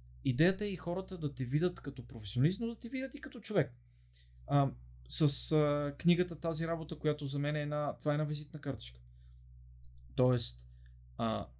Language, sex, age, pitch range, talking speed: Bulgarian, male, 30-49, 95-145 Hz, 175 wpm